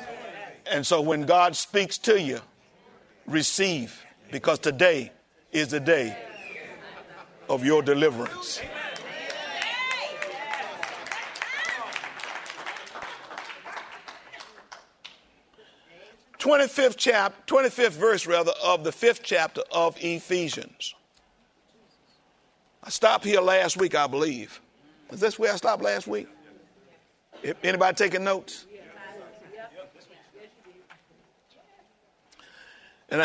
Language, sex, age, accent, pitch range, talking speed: English, male, 50-69, American, 160-210 Hz, 80 wpm